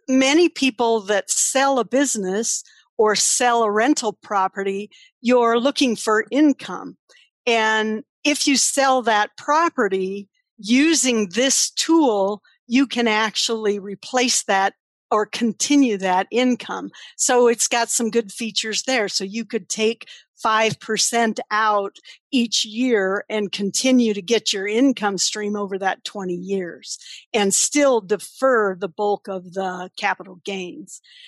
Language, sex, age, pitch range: English, female, 50-69, 205-255 Hz